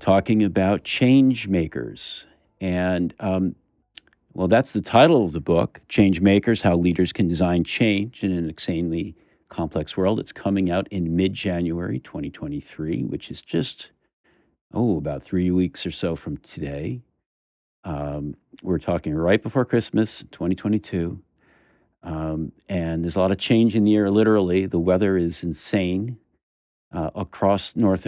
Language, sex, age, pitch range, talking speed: English, male, 50-69, 85-110 Hz, 145 wpm